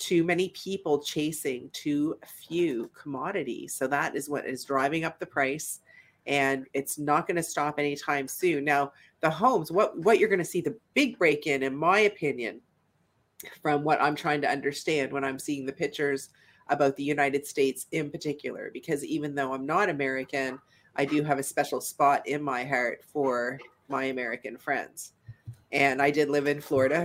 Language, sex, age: English, female, 40-59